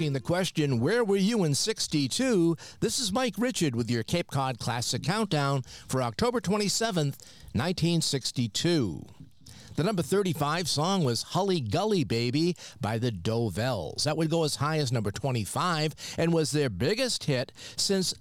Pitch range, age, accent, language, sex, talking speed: 120-170 Hz, 50-69, American, English, male, 150 wpm